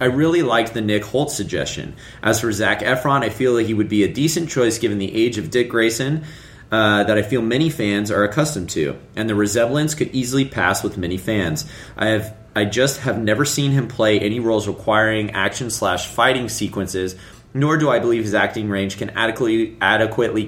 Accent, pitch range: American, 105-125 Hz